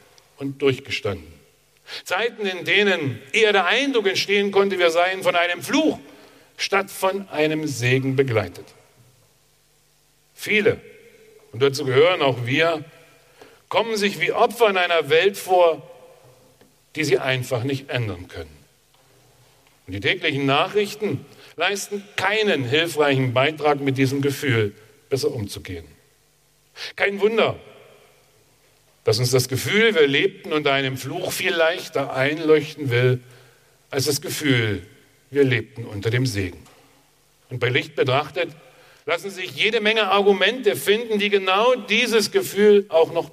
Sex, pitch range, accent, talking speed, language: male, 135-210 Hz, German, 125 wpm, German